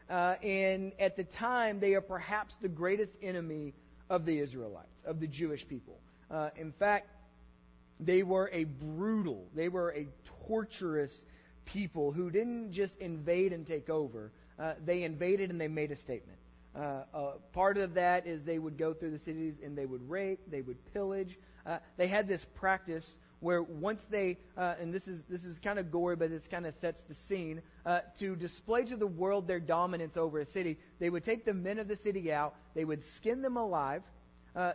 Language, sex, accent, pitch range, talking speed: English, male, American, 160-195 Hz, 195 wpm